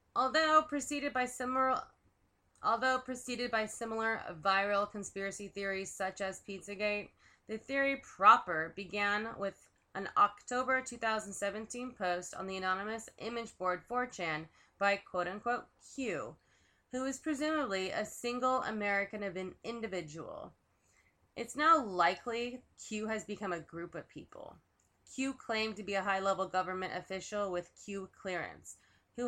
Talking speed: 130 wpm